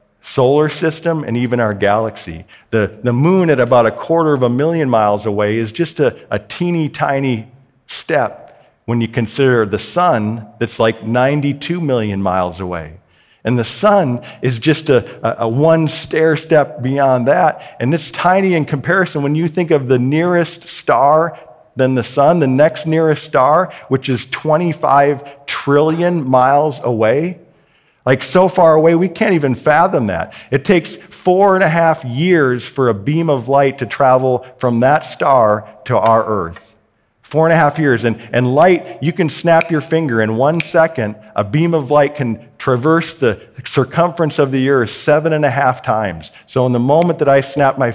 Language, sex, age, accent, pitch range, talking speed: English, male, 50-69, American, 120-160 Hz, 180 wpm